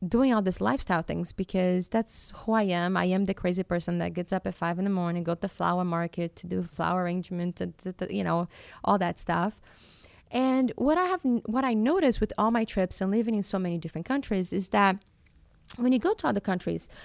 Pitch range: 180-245 Hz